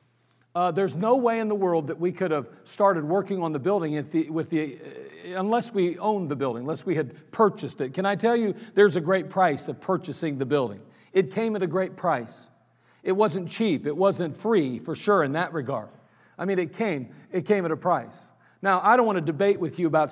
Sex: male